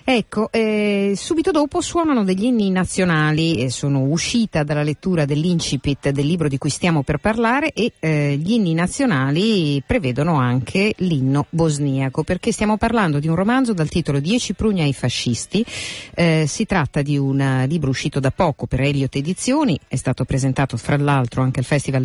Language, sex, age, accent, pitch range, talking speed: Italian, female, 50-69, native, 135-185 Hz, 170 wpm